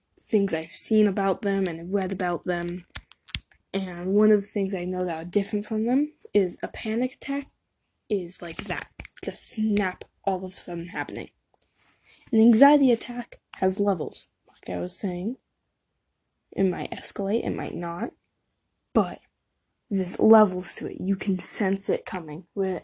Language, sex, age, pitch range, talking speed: English, female, 10-29, 180-215 Hz, 160 wpm